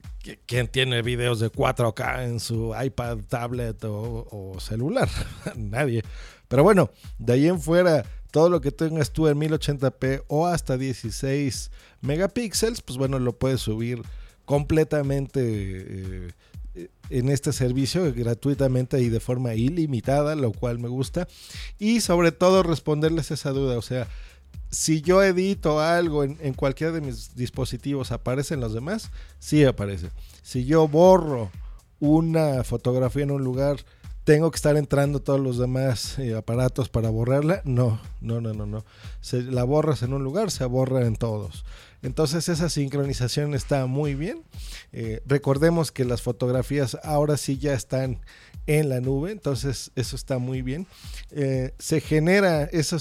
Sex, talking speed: male, 150 wpm